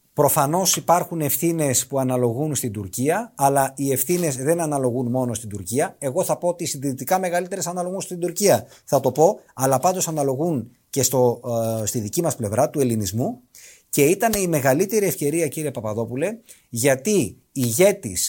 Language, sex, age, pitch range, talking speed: Greek, male, 30-49, 125-175 Hz, 160 wpm